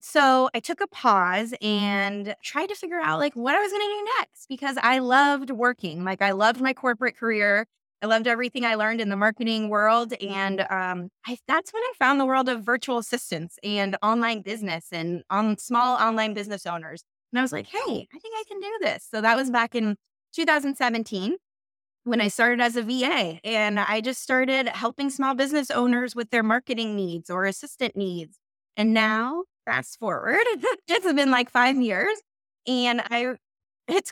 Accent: American